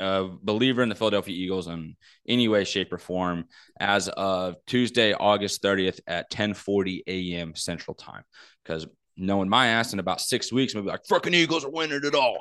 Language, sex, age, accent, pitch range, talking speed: English, male, 20-39, American, 95-115 Hz, 195 wpm